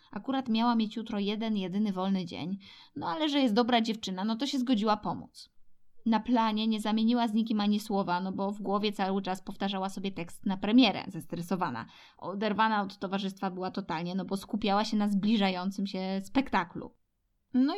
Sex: female